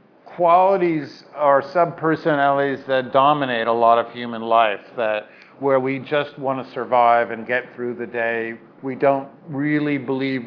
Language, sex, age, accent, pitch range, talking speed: English, male, 50-69, American, 130-150 Hz, 150 wpm